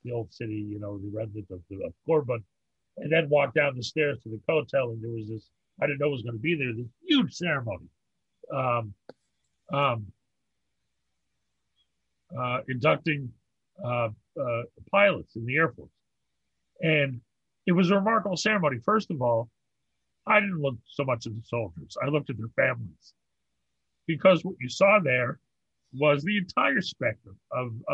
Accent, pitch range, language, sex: American, 115-150 Hz, English, male